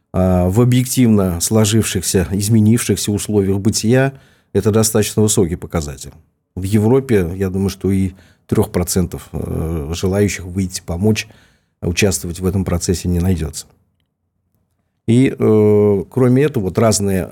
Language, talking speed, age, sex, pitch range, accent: Russian, 105 wpm, 40-59, male, 95-110 Hz, native